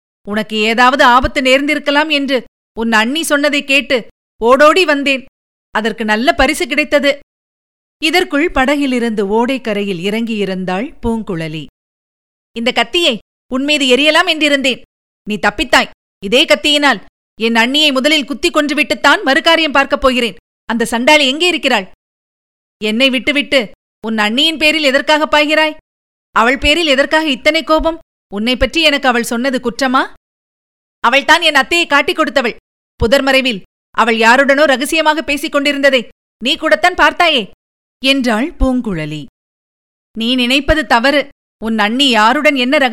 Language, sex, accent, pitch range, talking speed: Tamil, female, native, 240-300 Hz, 115 wpm